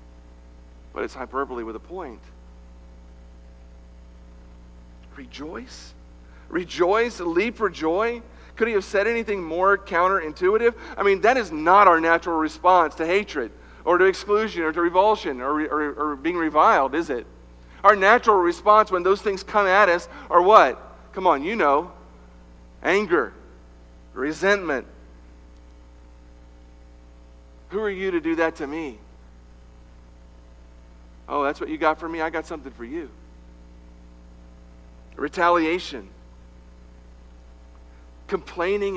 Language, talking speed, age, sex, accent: English, 125 wpm, 50-69, male, American